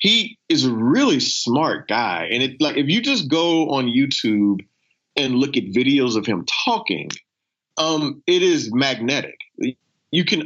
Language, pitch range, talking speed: English, 105-140 Hz, 160 wpm